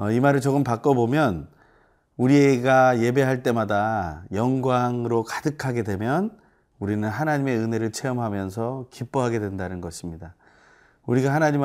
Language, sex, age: Korean, male, 30-49